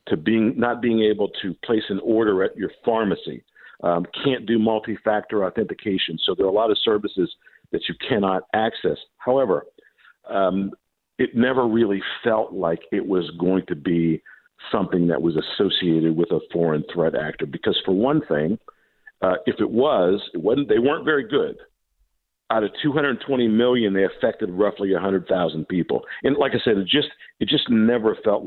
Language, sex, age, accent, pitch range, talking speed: English, male, 50-69, American, 90-130 Hz, 175 wpm